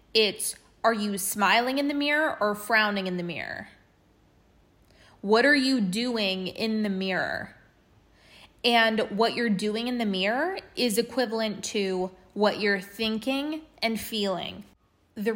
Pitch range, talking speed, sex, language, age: 200-235 Hz, 135 wpm, female, English, 20-39